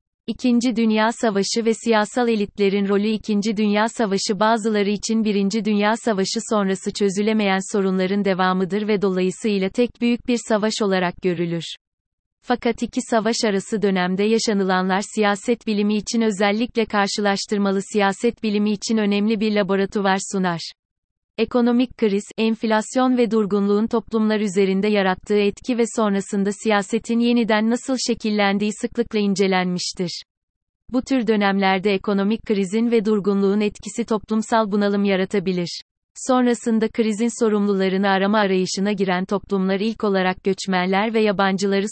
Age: 30-49